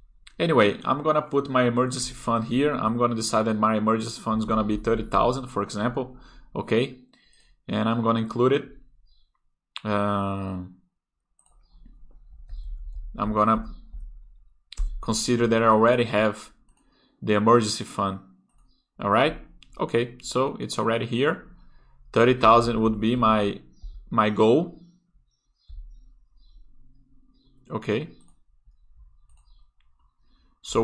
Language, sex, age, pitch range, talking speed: Portuguese, male, 20-39, 105-130 Hz, 105 wpm